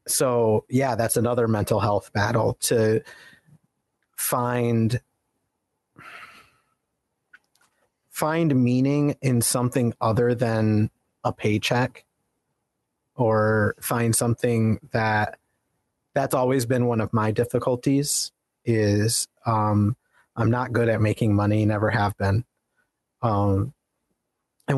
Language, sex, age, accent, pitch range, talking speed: English, male, 30-49, American, 110-125 Hz, 100 wpm